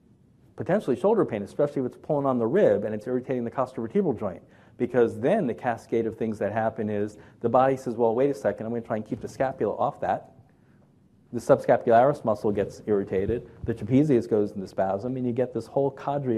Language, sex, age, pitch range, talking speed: English, male, 40-59, 110-135 Hz, 215 wpm